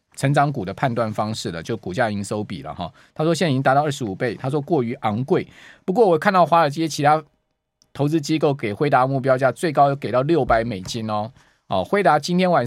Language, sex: Chinese, male